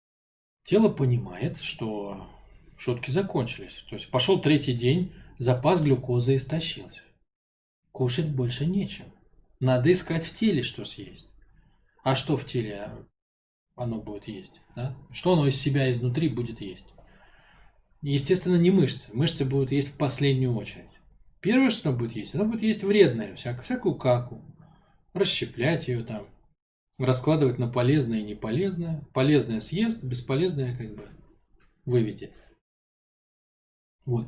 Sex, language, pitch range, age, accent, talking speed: male, Russian, 115-155 Hz, 20-39, native, 125 wpm